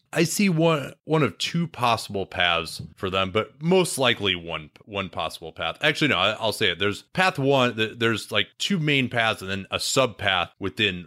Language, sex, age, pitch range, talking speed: English, male, 30-49, 85-115 Hz, 195 wpm